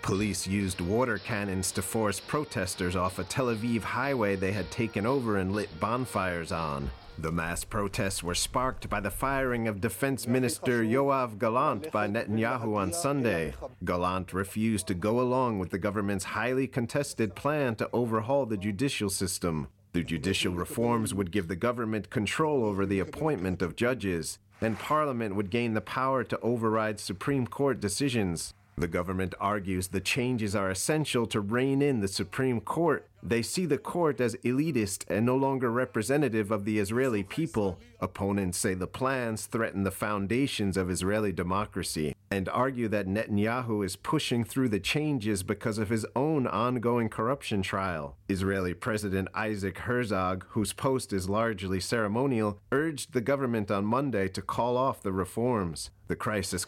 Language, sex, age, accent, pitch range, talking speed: English, male, 40-59, American, 95-125 Hz, 160 wpm